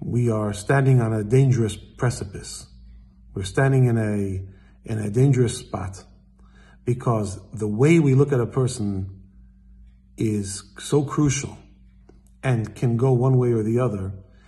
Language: English